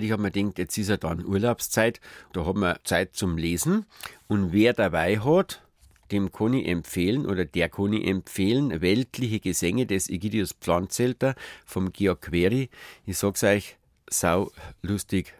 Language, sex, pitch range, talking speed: German, male, 90-115 Hz, 160 wpm